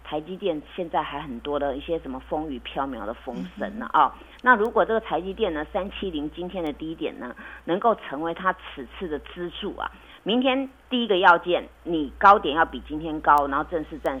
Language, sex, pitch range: Chinese, female, 155-225 Hz